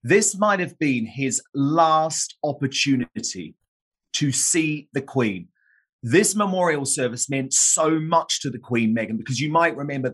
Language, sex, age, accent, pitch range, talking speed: English, male, 30-49, British, 115-145 Hz, 150 wpm